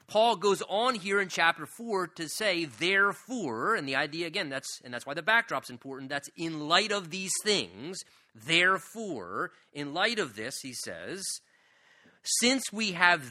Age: 40-59